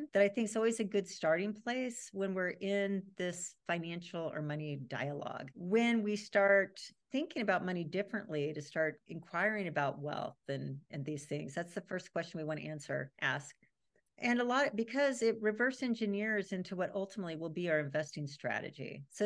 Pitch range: 155-205 Hz